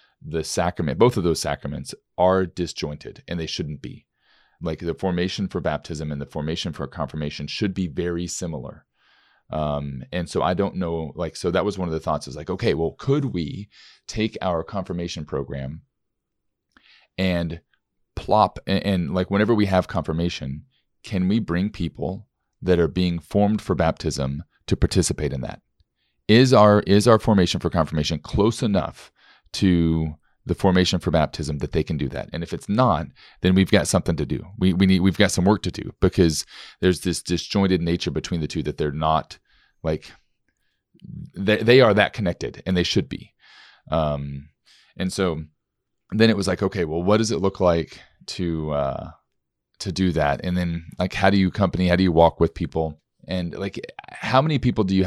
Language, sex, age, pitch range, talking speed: English, male, 30-49, 80-95 Hz, 185 wpm